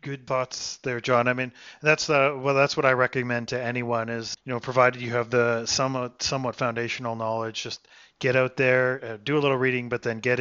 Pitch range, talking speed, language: 120-135 Hz, 220 wpm, English